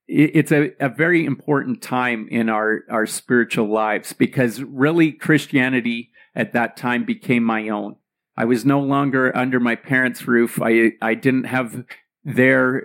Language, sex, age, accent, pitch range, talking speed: English, male, 50-69, American, 115-135 Hz, 155 wpm